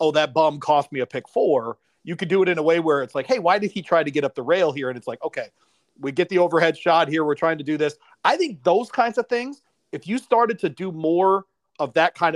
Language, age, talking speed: English, 40-59, 285 wpm